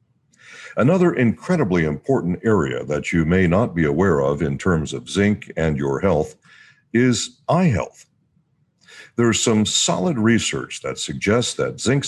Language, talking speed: English, 150 wpm